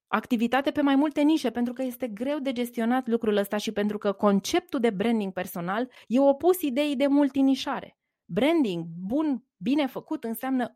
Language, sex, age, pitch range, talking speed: Romanian, female, 20-39, 200-275 Hz, 165 wpm